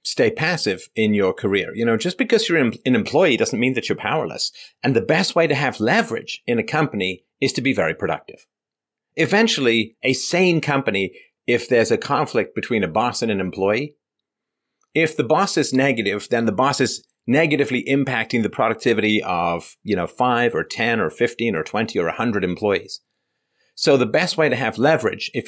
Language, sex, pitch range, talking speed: English, male, 105-150 Hz, 190 wpm